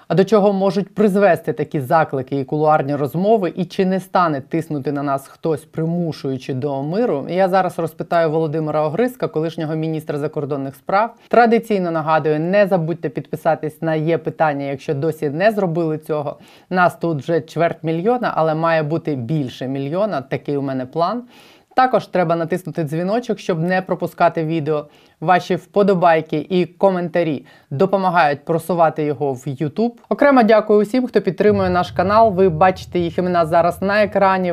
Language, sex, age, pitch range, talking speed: Ukrainian, female, 20-39, 155-190 Hz, 155 wpm